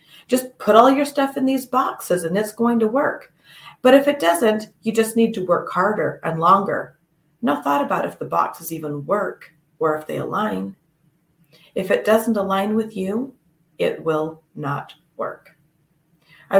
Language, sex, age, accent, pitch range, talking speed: English, female, 40-59, American, 160-230 Hz, 175 wpm